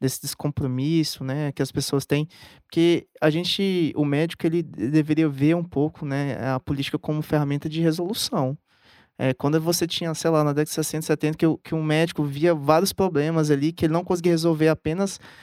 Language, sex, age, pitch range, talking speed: Portuguese, male, 20-39, 145-175 Hz, 195 wpm